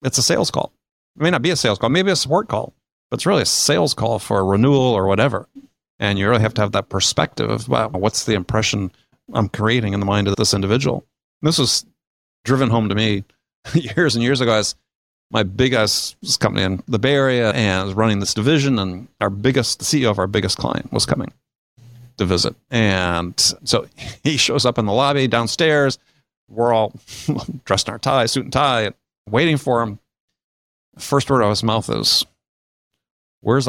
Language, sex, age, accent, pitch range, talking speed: English, male, 40-59, American, 100-135 Hz, 200 wpm